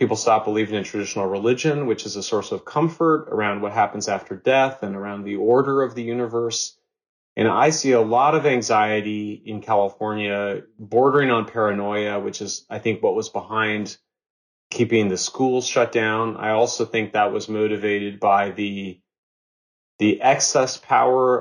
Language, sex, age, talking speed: English, male, 30-49, 165 wpm